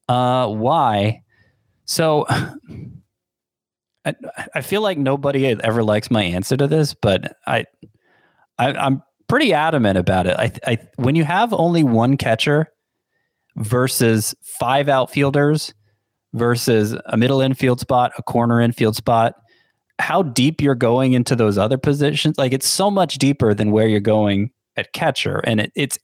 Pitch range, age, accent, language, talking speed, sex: 110-145 Hz, 30-49, American, English, 145 wpm, male